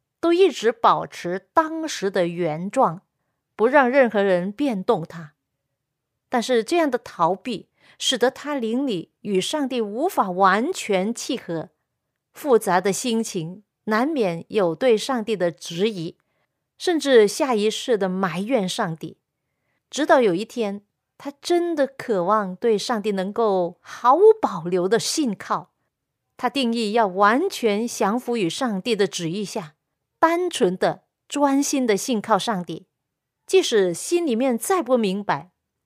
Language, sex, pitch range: Chinese, female, 185-260 Hz